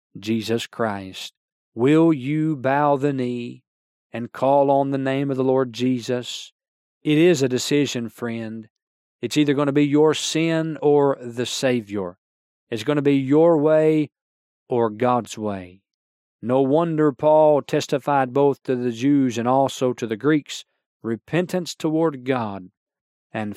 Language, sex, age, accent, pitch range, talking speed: English, male, 40-59, American, 105-145 Hz, 145 wpm